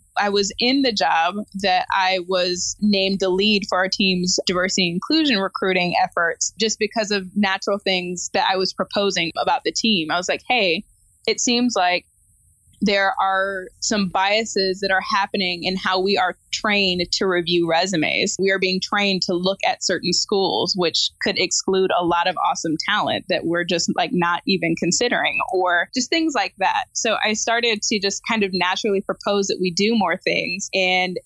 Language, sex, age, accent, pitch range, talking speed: English, female, 20-39, American, 180-205 Hz, 185 wpm